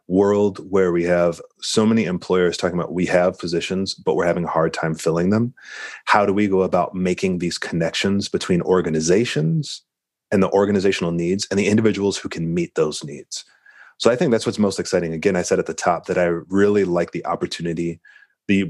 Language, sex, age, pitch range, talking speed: English, male, 30-49, 85-105 Hz, 200 wpm